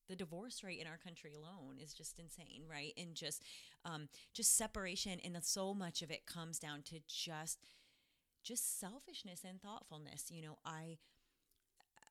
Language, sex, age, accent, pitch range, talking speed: English, female, 30-49, American, 145-180 Hz, 165 wpm